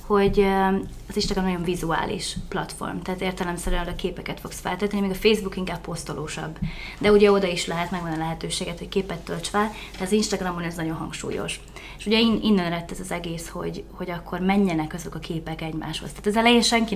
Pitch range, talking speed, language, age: 175-210 Hz, 190 wpm, Hungarian, 20-39